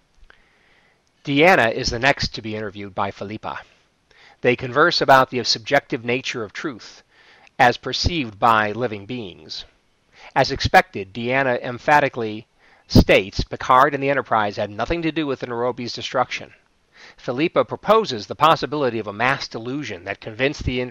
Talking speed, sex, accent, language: 145 wpm, male, American, English